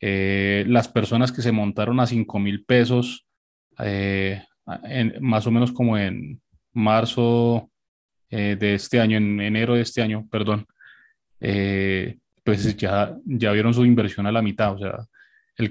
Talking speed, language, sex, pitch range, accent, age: 155 wpm, Spanish, male, 105-120 Hz, Colombian, 20-39